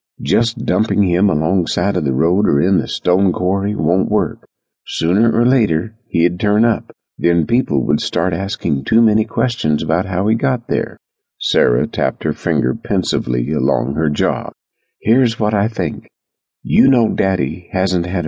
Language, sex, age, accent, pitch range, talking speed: English, male, 50-69, American, 85-115 Hz, 165 wpm